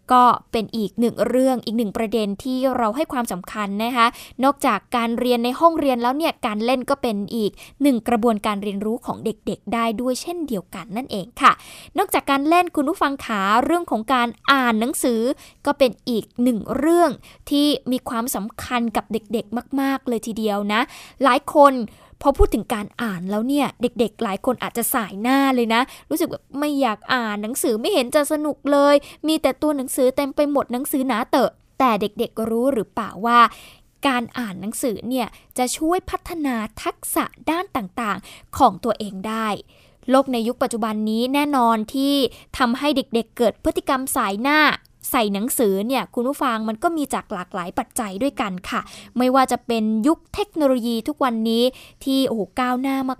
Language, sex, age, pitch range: Thai, female, 10-29, 225-275 Hz